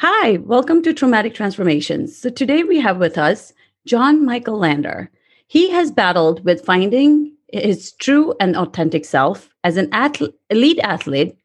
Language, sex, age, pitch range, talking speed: English, female, 40-59, 175-245 Hz, 145 wpm